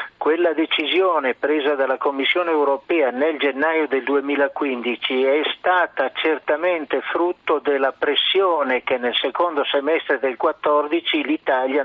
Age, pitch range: 50-69, 130-150 Hz